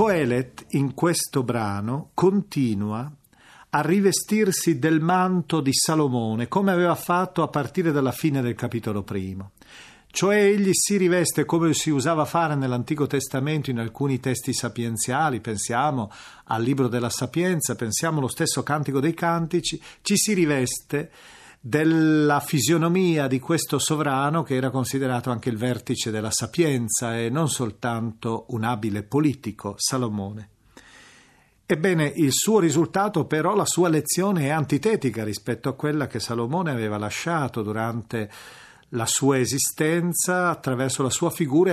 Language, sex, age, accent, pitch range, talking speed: Italian, male, 40-59, native, 115-160 Hz, 135 wpm